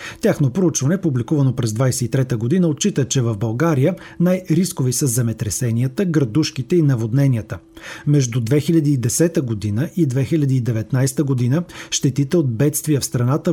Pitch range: 125-165 Hz